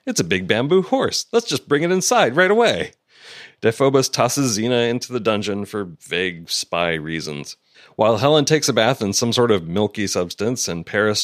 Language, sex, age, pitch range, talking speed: English, male, 40-59, 100-140 Hz, 185 wpm